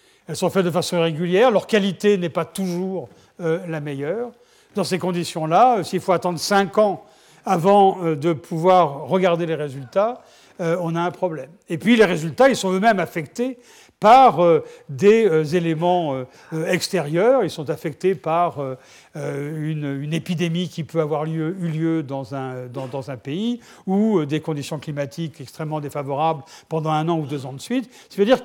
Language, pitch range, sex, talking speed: French, 160-205 Hz, male, 160 wpm